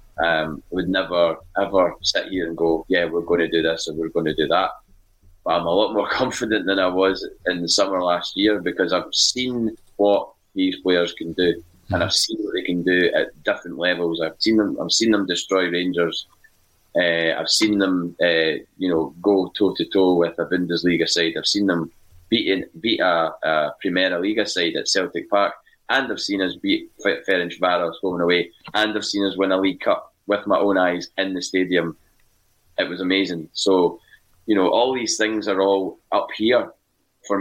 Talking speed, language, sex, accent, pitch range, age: 205 wpm, English, male, British, 85-100 Hz, 20-39